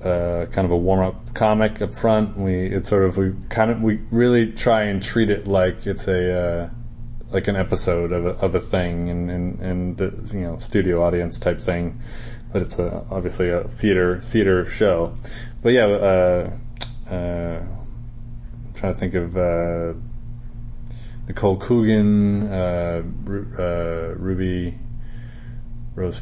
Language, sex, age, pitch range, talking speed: English, male, 20-39, 90-115 Hz, 155 wpm